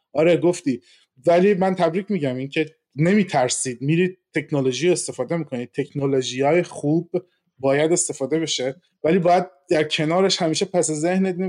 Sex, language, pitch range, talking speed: male, Persian, 130-180 Hz, 135 wpm